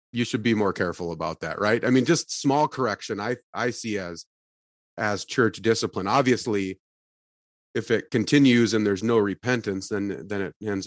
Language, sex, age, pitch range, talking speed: English, male, 30-49, 95-120 Hz, 175 wpm